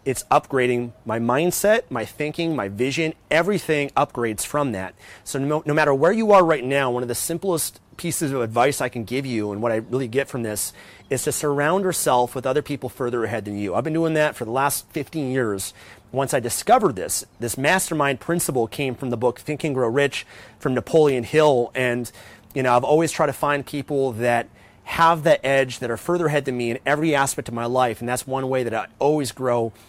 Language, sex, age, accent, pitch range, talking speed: English, male, 30-49, American, 120-150 Hz, 220 wpm